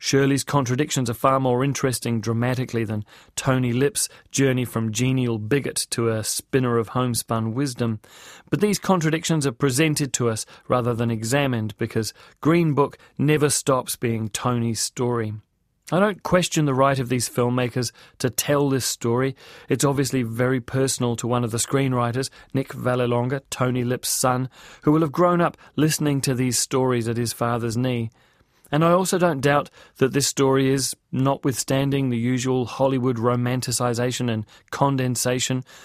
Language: English